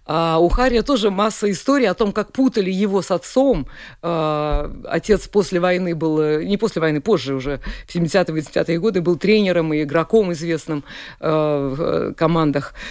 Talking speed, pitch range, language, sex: 160 wpm, 165-230 Hz, Russian, female